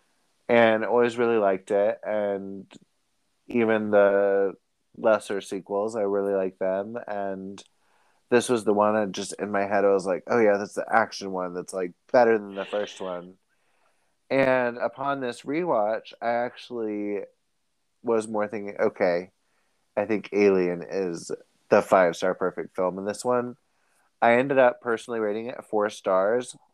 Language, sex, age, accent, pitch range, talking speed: English, male, 30-49, American, 95-115 Hz, 155 wpm